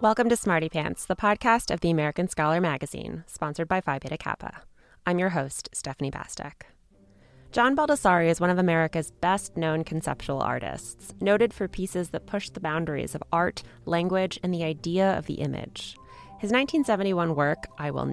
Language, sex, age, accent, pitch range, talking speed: English, female, 20-39, American, 150-195 Hz, 170 wpm